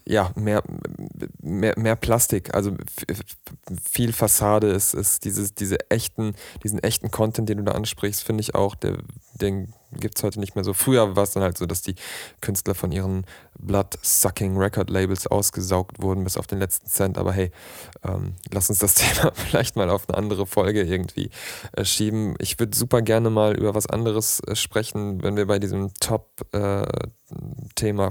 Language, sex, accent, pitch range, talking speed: German, male, German, 95-110 Hz, 180 wpm